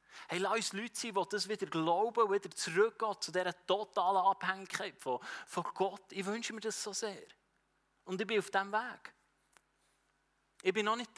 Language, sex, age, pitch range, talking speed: German, male, 30-49, 160-215 Hz, 180 wpm